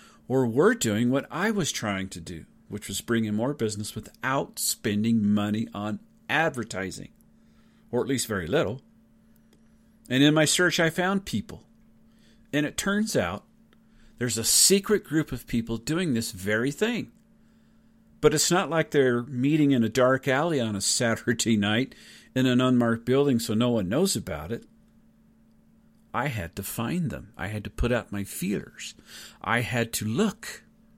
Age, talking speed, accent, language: 50-69, 165 wpm, American, English